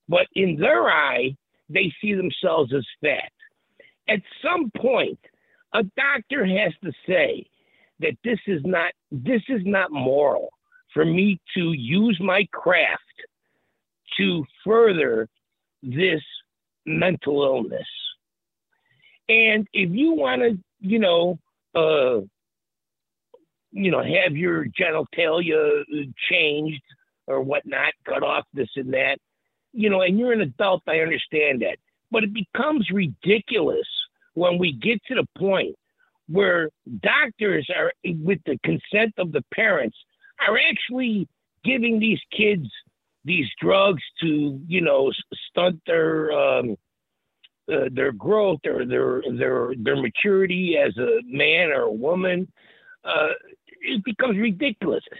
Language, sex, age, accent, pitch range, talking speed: English, male, 60-79, American, 165-255 Hz, 125 wpm